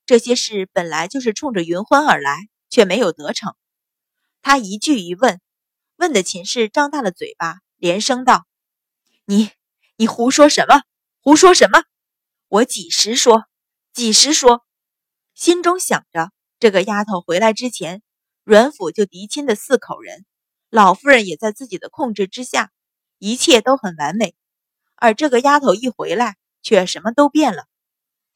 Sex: female